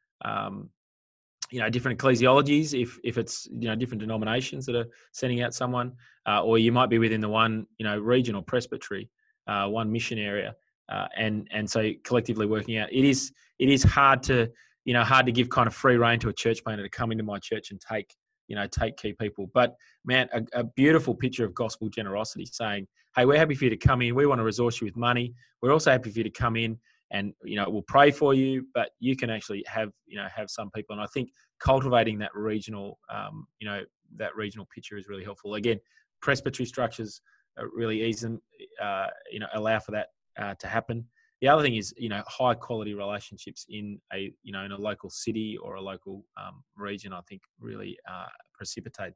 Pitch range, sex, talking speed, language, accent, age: 105-125 Hz, male, 215 wpm, English, Australian, 20-39